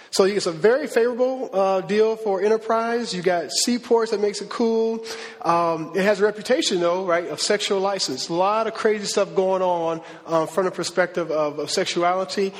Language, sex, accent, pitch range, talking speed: English, male, American, 165-200 Hz, 190 wpm